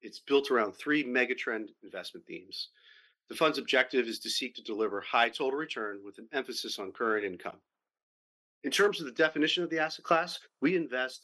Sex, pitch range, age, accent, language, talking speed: male, 125-180 Hz, 40-59, American, English, 185 wpm